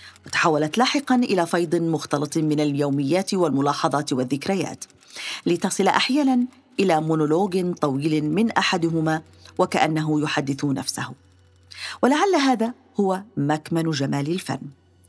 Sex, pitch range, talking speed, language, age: female, 150-225 Hz, 100 wpm, Arabic, 40-59